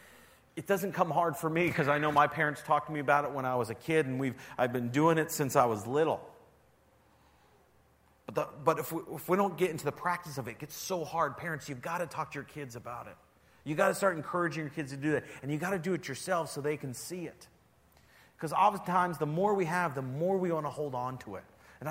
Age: 40-59